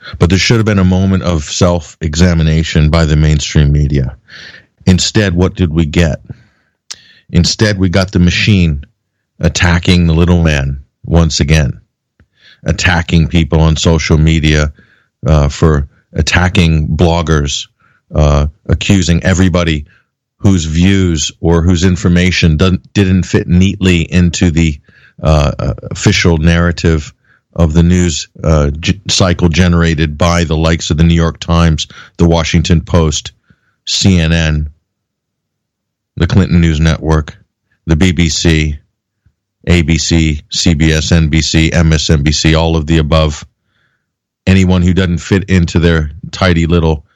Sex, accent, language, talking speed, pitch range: male, American, English, 120 wpm, 80-90 Hz